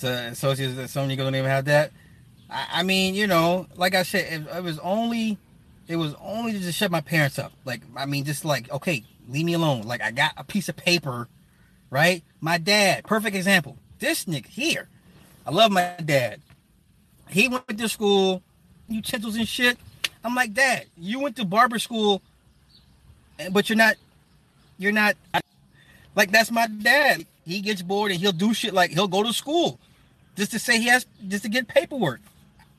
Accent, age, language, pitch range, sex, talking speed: American, 20-39, English, 160-225 Hz, male, 190 wpm